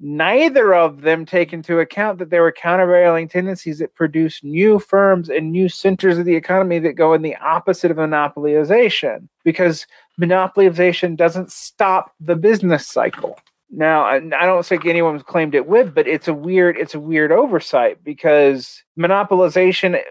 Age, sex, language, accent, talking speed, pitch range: 30-49, male, English, American, 160 wpm, 145-180 Hz